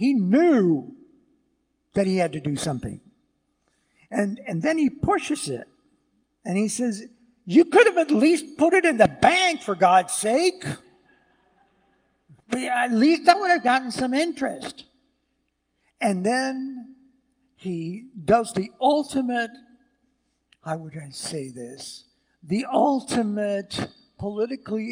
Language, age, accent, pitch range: English, 60-79, American, 170-265 Hz